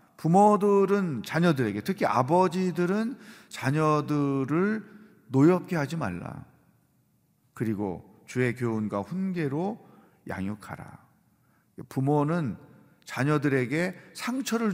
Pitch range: 130-180 Hz